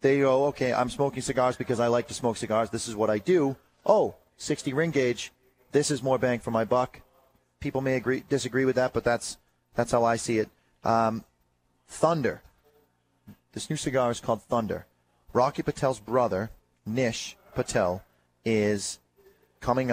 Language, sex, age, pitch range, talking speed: English, male, 30-49, 105-135 Hz, 170 wpm